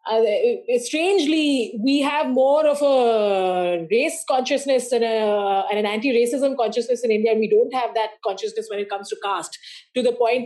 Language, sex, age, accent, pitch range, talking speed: English, female, 30-49, Indian, 220-290 Hz, 180 wpm